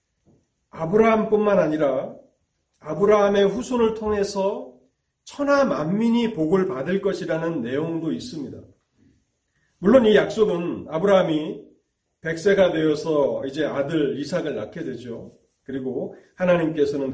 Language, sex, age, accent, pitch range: Korean, male, 40-59, native, 135-190 Hz